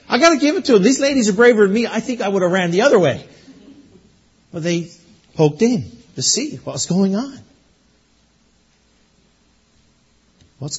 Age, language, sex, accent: 50-69, English, male, American